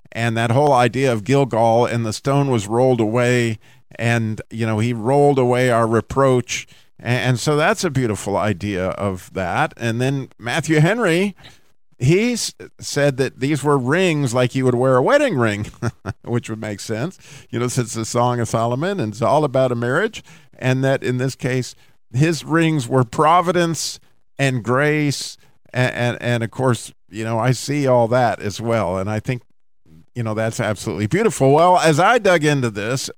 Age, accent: 50-69, American